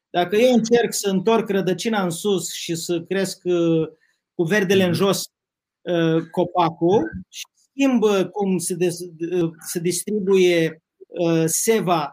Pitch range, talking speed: 170-220 Hz, 110 wpm